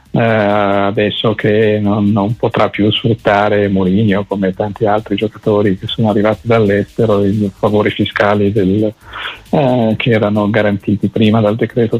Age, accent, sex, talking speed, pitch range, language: 50-69, native, male, 130 wpm, 105-120 Hz, Italian